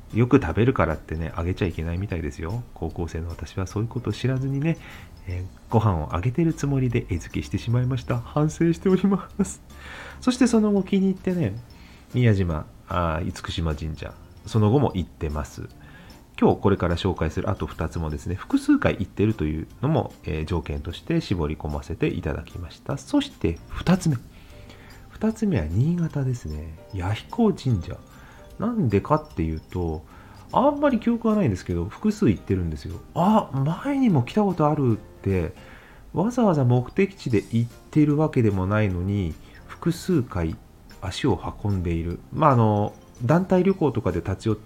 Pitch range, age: 85-140 Hz, 40-59